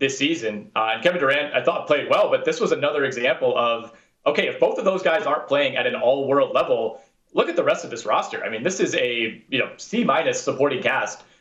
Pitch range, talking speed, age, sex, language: 140-215 Hz, 235 wpm, 30-49, male, English